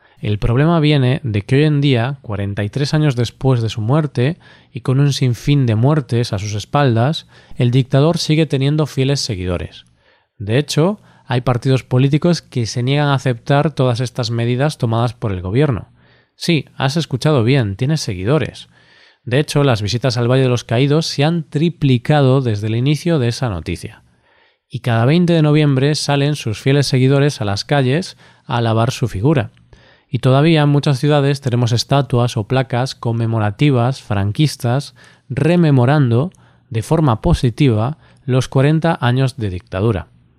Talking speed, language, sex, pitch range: 160 wpm, Spanish, male, 115-145 Hz